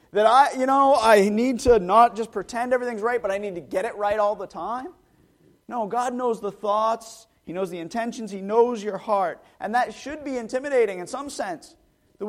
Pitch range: 150-245 Hz